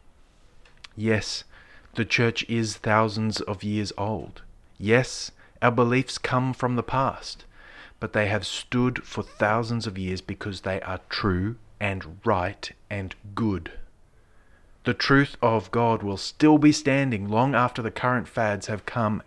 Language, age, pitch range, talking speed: English, 30-49, 90-115 Hz, 145 wpm